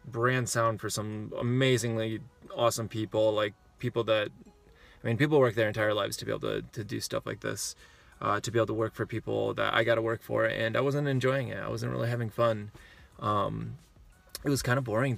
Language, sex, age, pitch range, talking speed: English, male, 20-39, 110-125 Hz, 220 wpm